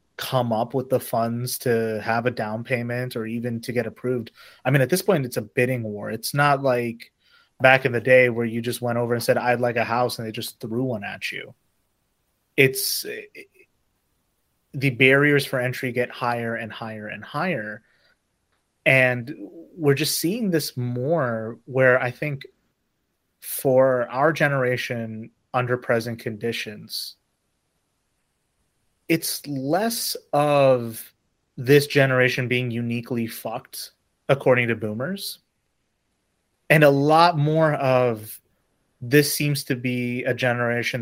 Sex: male